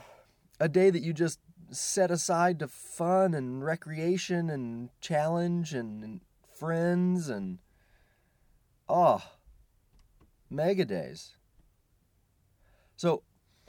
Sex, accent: male, American